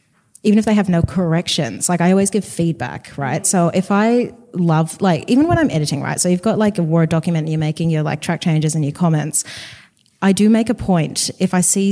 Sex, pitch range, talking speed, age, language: female, 160-180 Hz, 235 wpm, 20-39, English